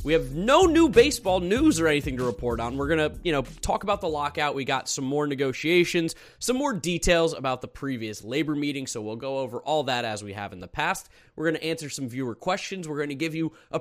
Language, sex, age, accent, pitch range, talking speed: English, male, 20-39, American, 120-165 Hz, 250 wpm